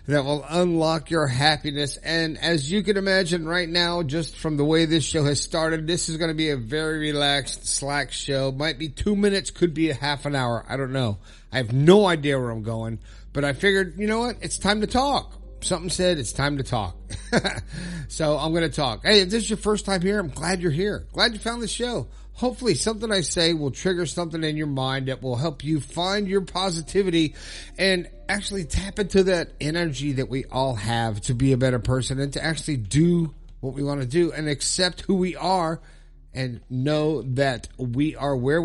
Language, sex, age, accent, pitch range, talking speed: English, male, 50-69, American, 130-180 Hz, 215 wpm